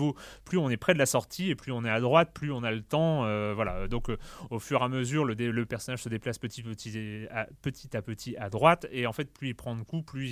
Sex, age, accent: male, 30-49, French